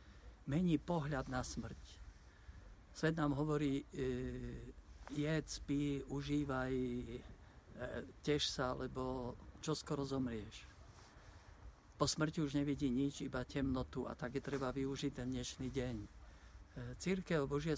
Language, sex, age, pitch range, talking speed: Slovak, male, 50-69, 125-145 Hz, 120 wpm